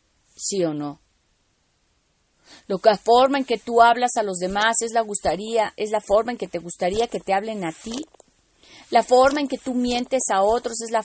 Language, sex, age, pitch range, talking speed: Spanish, female, 30-49, 175-245 Hz, 200 wpm